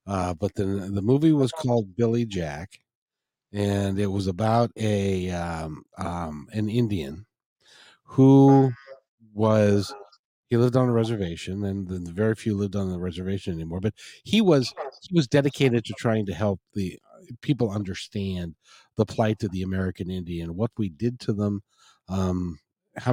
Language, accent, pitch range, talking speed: English, American, 95-120 Hz, 160 wpm